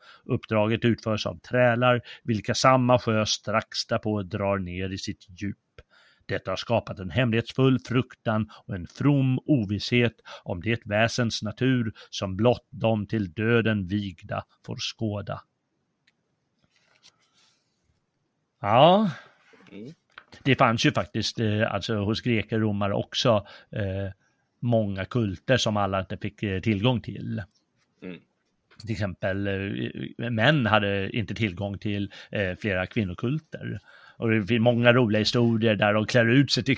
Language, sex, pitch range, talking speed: Swedish, male, 100-125 Hz, 125 wpm